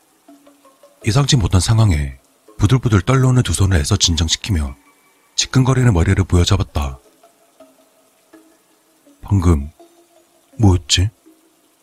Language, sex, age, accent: Korean, male, 40-59, native